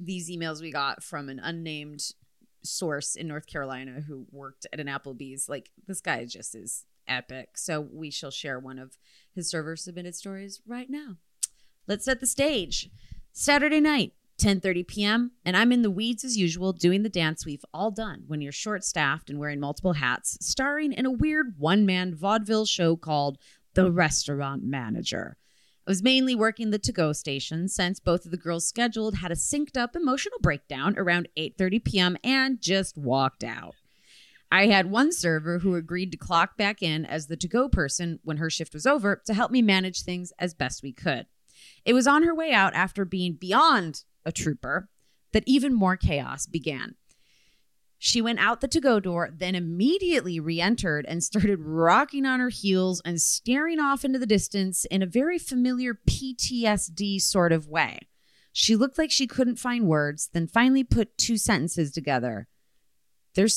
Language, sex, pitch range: English, female, 155-230 Hz